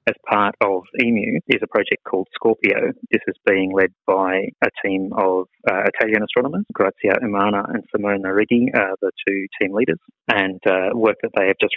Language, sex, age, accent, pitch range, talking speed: English, male, 30-49, Australian, 95-105 Hz, 190 wpm